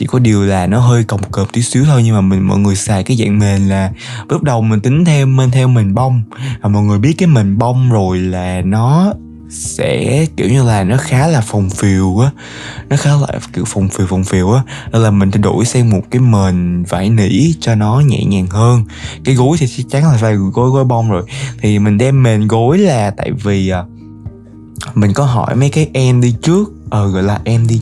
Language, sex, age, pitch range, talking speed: Vietnamese, male, 20-39, 105-130 Hz, 230 wpm